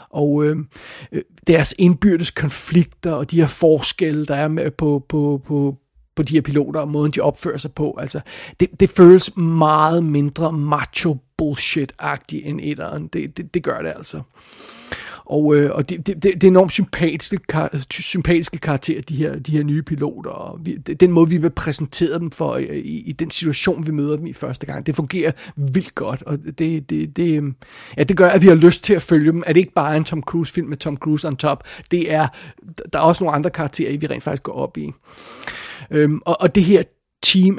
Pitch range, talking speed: 150-175 Hz, 210 wpm